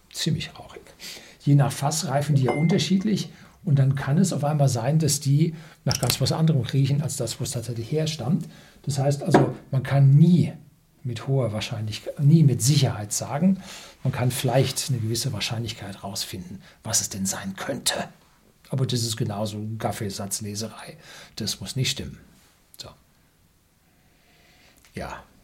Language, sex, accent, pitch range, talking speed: German, male, German, 115-150 Hz, 150 wpm